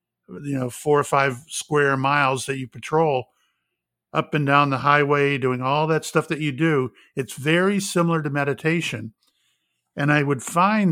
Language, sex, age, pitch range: English, male, 50-69, 135-160 Hz